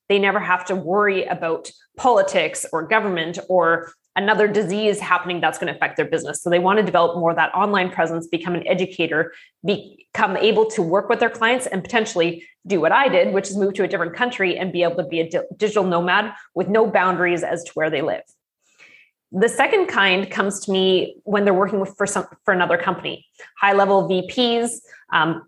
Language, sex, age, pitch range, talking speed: English, female, 20-39, 180-230 Hz, 205 wpm